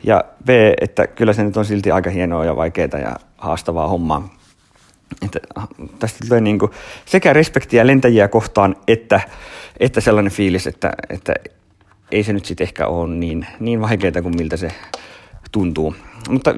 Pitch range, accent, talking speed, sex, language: 90-115 Hz, native, 160 wpm, male, Finnish